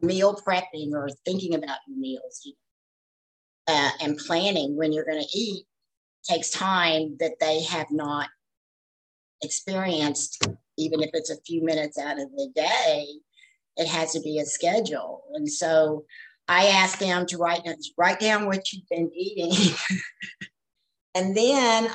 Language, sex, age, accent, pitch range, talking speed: English, female, 50-69, American, 155-200 Hz, 140 wpm